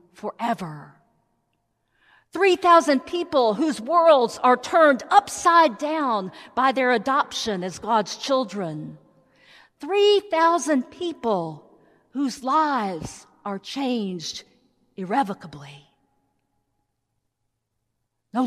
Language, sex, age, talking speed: English, female, 50-69, 80 wpm